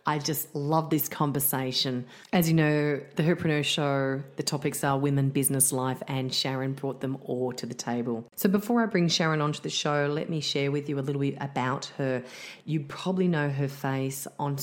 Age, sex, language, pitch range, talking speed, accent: 30-49, female, English, 130-145 Hz, 200 wpm, Australian